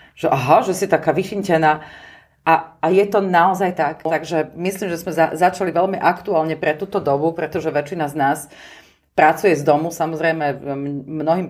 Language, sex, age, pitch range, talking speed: Slovak, female, 30-49, 145-175 Hz, 160 wpm